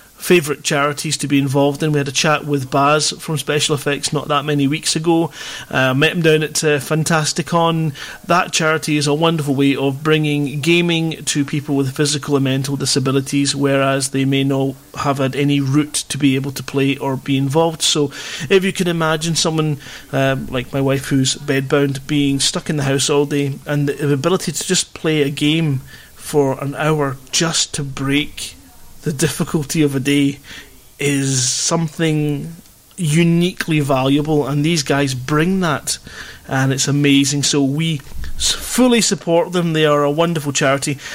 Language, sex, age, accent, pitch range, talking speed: English, male, 30-49, British, 140-170 Hz, 175 wpm